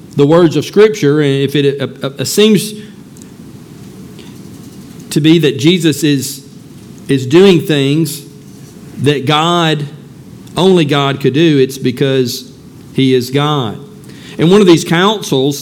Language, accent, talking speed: English, American, 135 wpm